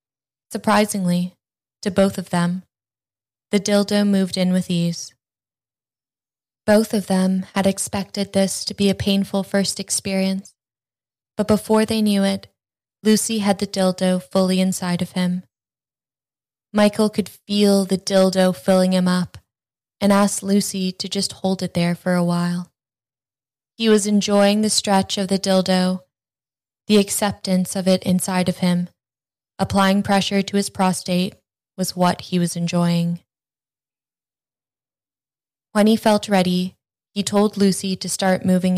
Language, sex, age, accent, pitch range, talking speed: English, female, 10-29, American, 170-195 Hz, 140 wpm